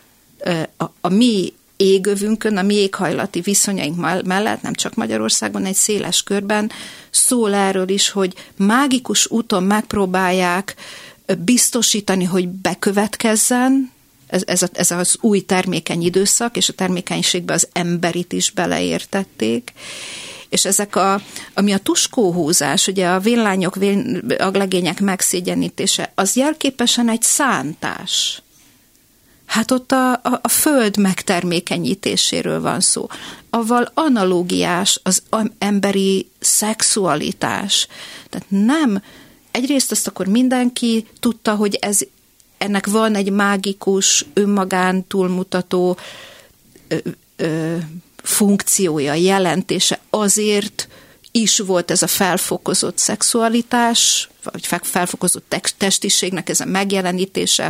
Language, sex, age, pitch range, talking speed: Hungarian, female, 50-69, 180-220 Hz, 110 wpm